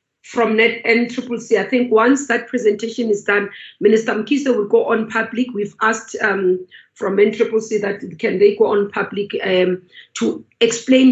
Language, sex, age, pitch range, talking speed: English, female, 40-59, 200-240 Hz, 155 wpm